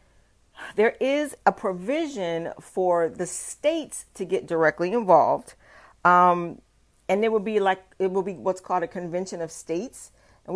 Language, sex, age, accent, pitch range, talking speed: English, female, 40-59, American, 175-220 Hz, 155 wpm